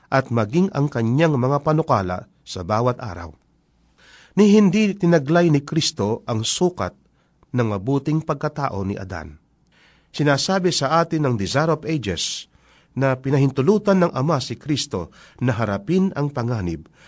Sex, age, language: male, 50-69, Filipino